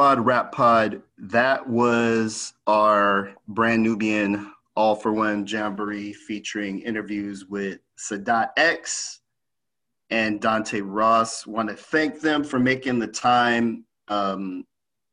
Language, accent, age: English, American, 30-49